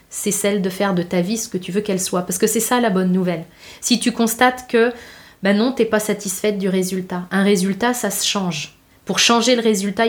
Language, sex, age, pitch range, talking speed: French, female, 30-49, 190-235 Hz, 245 wpm